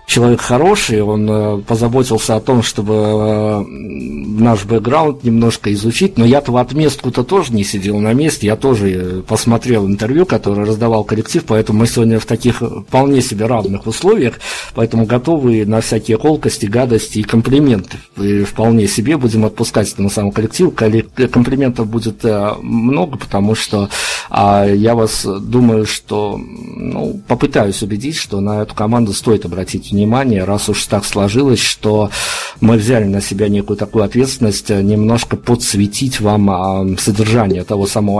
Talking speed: 140 wpm